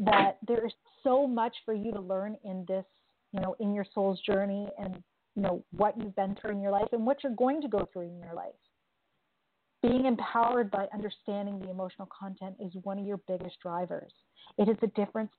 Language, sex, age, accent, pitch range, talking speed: English, female, 30-49, American, 185-210 Hz, 210 wpm